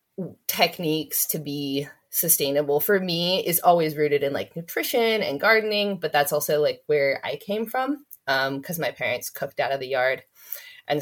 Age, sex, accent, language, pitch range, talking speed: 20-39, female, American, English, 145-190 Hz, 175 wpm